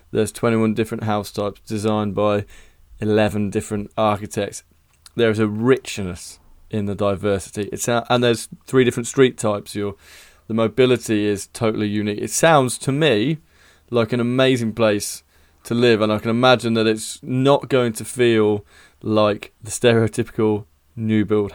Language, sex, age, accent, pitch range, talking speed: English, male, 20-39, British, 100-120 Hz, 155 wpm